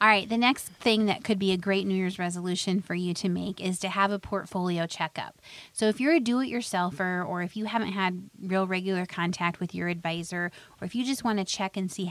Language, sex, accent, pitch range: English, female, American, 180-215 Hz